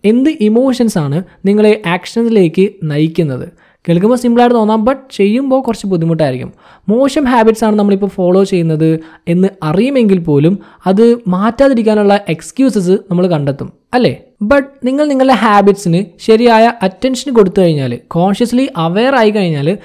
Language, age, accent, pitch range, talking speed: Malayalam, 20-39, native, 170-235 Hz, 110 wpm